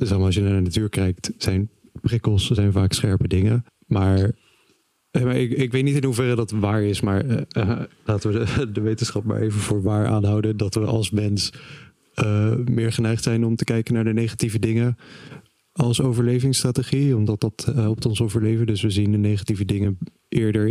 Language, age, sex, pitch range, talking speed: Dutch, 20-39, male, 100-120 Hz, 190 wpm